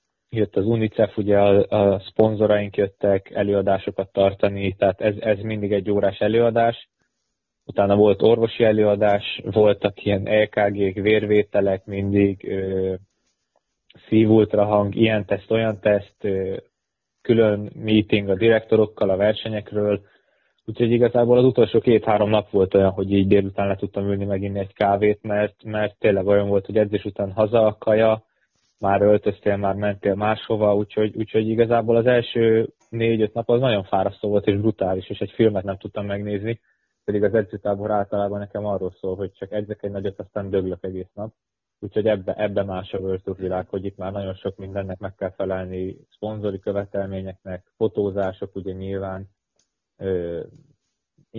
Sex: male